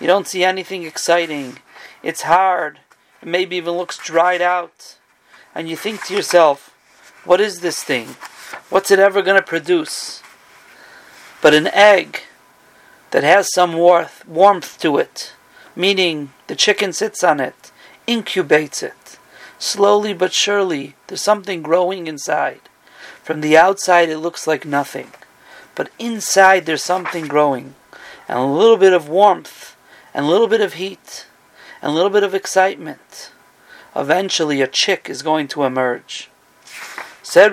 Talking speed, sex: 145 wpm, male